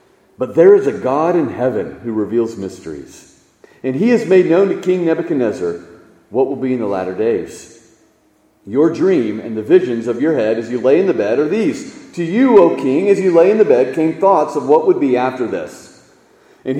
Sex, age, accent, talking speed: male, 40-59, American, 215 wpm